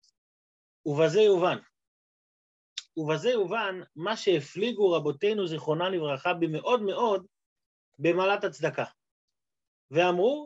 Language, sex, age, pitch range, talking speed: Hebrew, male, 30-49, 145-230 Hz, 80 wpm